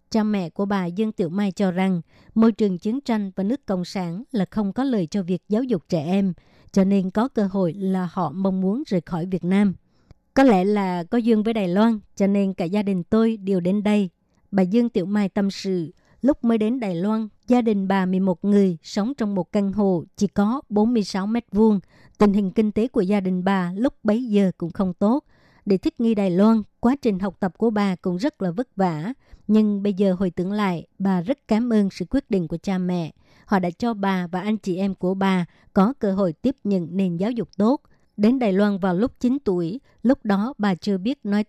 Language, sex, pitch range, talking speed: Vietnamese, male, 190-220 Hz, 230 wpm